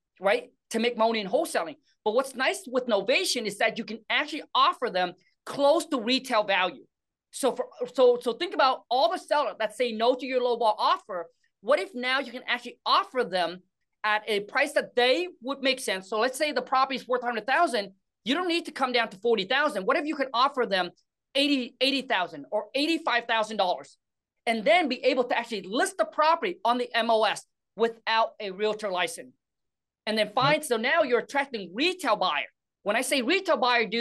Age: 30-49